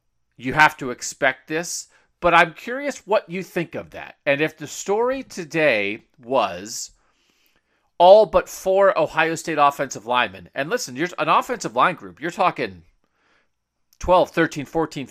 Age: 40-59